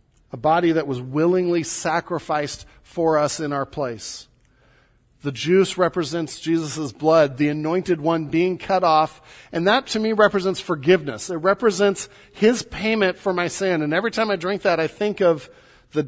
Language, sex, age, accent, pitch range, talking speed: English, male, 50-69, American, 130-165 Hz, 170 wpm